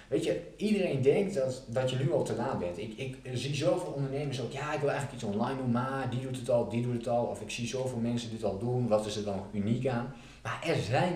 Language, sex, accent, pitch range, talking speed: Dutch, male, Dutch, 105-130 Hz, 275 wpm